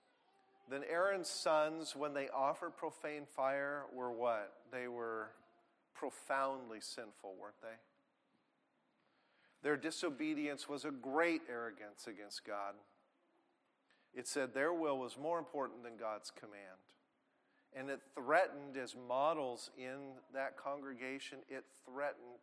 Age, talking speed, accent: 40-59, 120 wpm, American